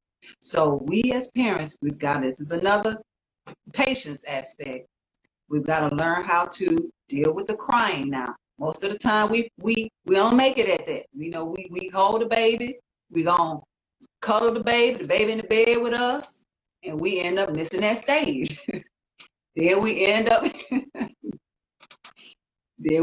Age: 30-49